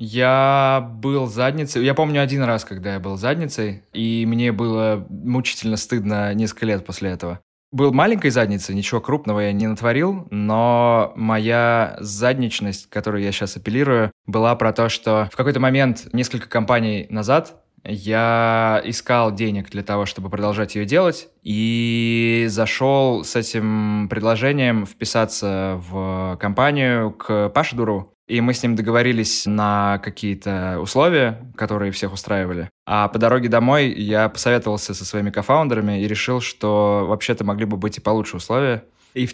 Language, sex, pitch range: Russian, male, 100-120 Hz